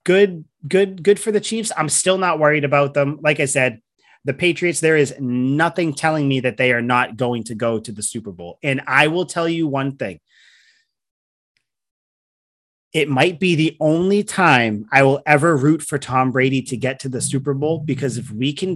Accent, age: American, 30-49